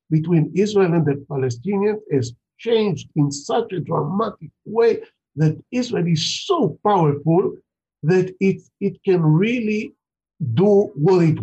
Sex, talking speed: male, 130 wpm